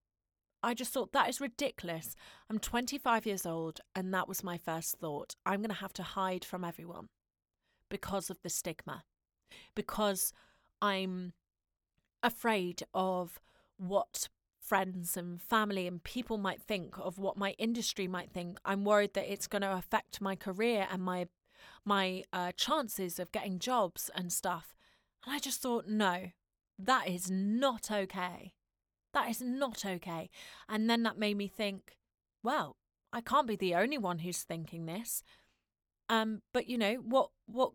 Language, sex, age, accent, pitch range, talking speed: English, female, 30-49, British, 180-235 Hz, 155 wpm